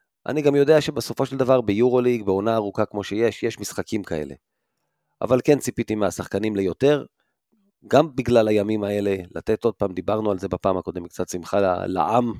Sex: male